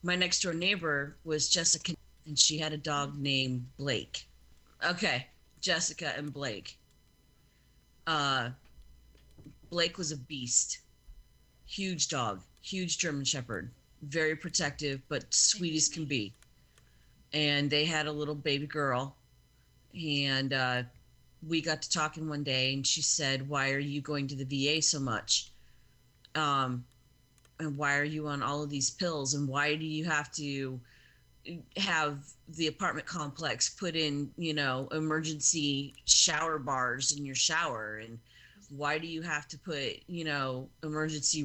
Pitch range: 130-155 Hz